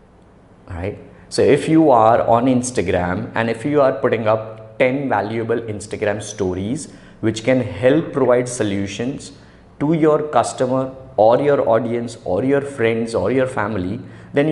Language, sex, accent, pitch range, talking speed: English, male, Indian, 105-140 Hz, 140 wpm